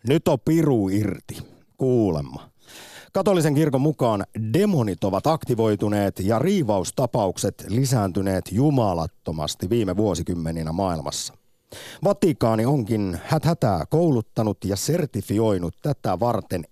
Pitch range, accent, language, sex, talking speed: 95-135 Hz, native, Finnish, male, 95 wpm